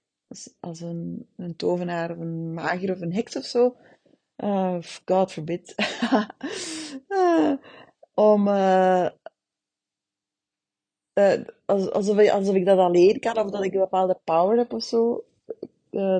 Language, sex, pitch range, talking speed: Dutch, female, 175-225 Hz, 130 wpm